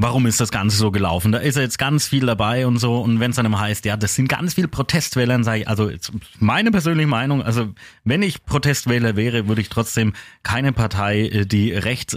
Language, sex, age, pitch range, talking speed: German, male, 30-49, 110-140 Hz, 220 wpm